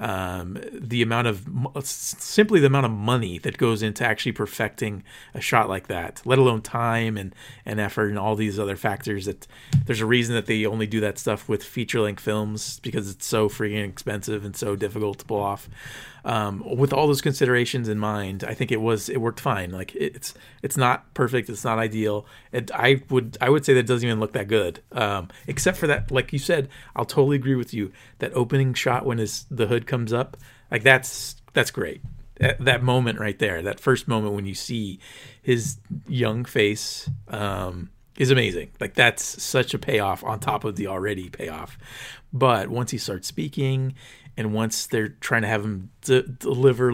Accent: American